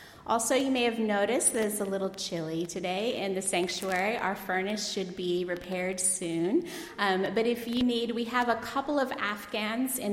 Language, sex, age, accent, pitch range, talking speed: English, female, 30-49, American, 180-240 Hz, 190 wpm